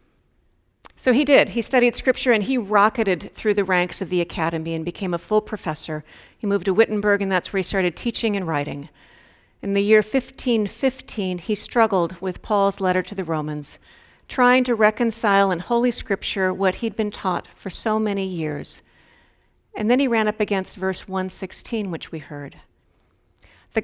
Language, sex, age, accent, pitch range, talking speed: English, female, 50-69, American, 170-225 Hz, 175 wpm